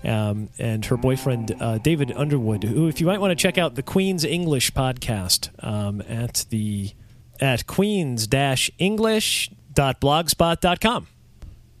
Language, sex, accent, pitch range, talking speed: English, male, American, 110-150 Hz, 120 wpm